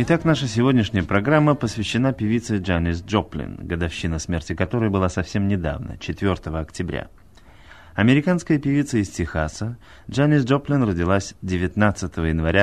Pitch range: 90-120 Hz